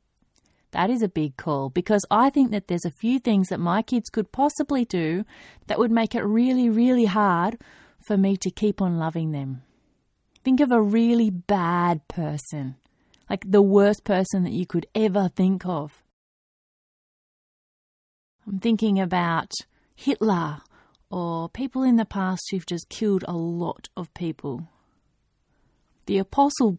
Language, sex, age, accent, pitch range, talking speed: English, female, 30-49, Australian, 175-225 Hz, 150 wpm